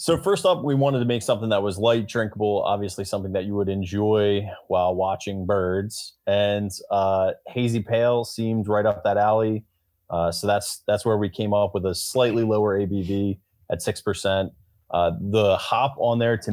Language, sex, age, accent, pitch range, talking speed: English, male, 30-49, American, 95-115 Hz, 190 wpm